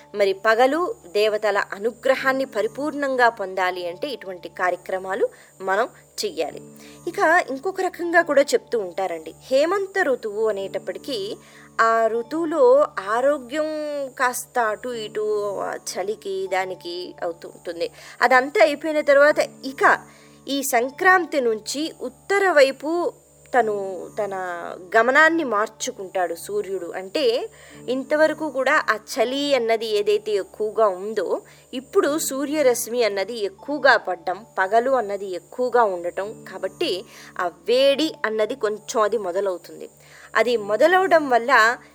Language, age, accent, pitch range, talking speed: Telugu, 20-39, native, 205-305 Hz, 95 wpm